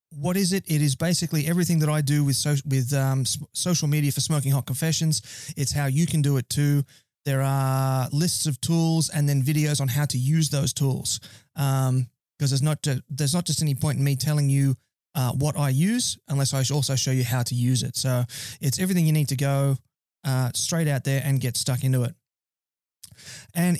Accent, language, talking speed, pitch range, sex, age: Australian, English, 210 wpm, 135-170 Hz, male, 20-39